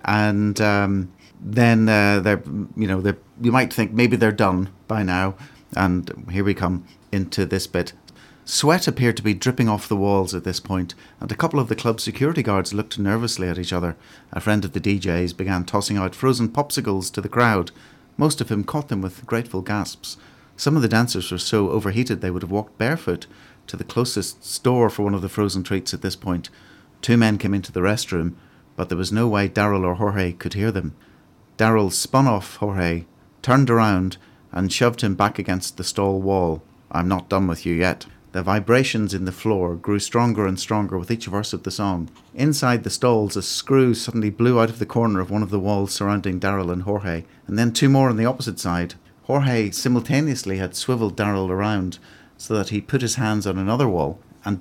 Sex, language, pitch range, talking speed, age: male, English, 95-115 Hz, 210 wpm, 40-59